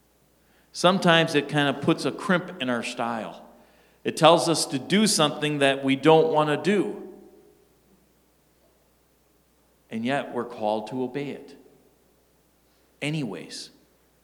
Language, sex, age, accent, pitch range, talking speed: English, male, 50-69, American, 125-170 Hz, 125 wpm